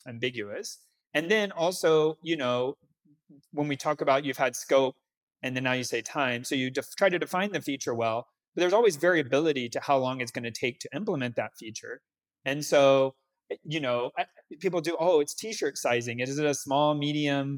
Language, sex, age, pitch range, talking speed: English, male, 30-49, 130-160 Hz, 200 wpm